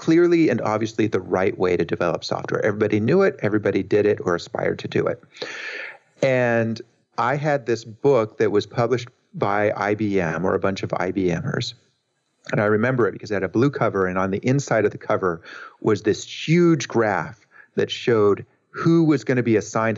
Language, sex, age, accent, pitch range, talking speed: English, male, 40-59, American, 100-125 Hz, 190 wpm